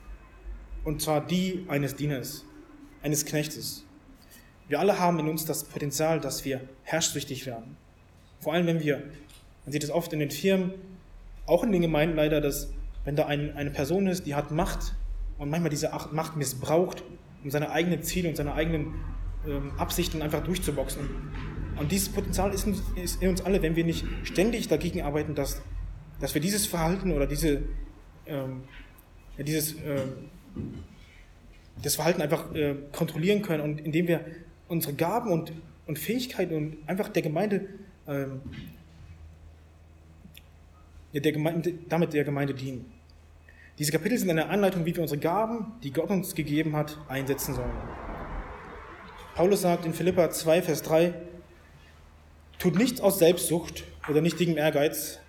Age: 20-39